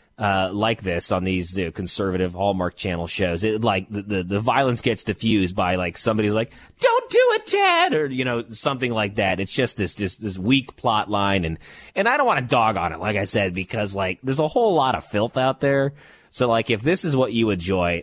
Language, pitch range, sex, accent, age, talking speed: English, 90-115 Hz, male, American, 30-49, 235 wpm